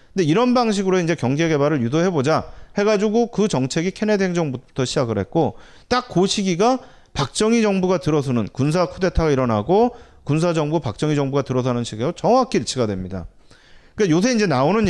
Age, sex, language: 30-49, male, Korean